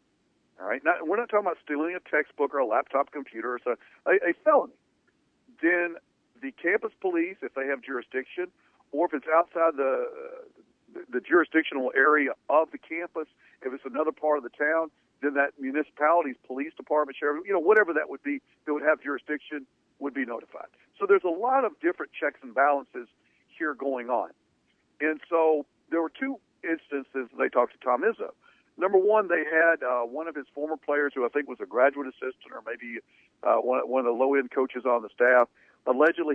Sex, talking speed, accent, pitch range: male, 195 wpm, American, 135-180 Hz